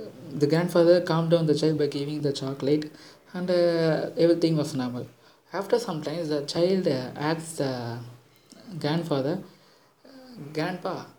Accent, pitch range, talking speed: native, 145-175 Hz, 135 wpm